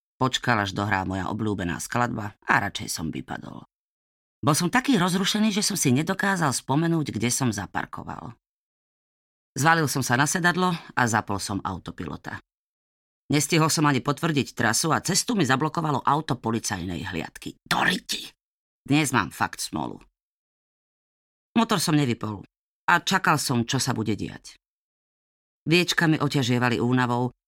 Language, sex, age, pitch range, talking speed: Slovak, female, 30-49, 115-165 Hz, 135 wpm